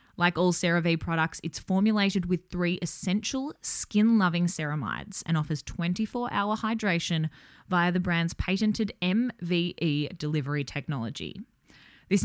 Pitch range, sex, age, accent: 155-200 Hz, female, 20-39, Australian